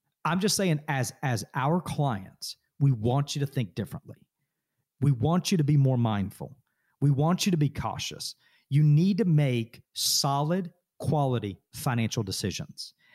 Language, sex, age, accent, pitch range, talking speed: English, male, 40-59, American, 125-170 Hz, 155 wpm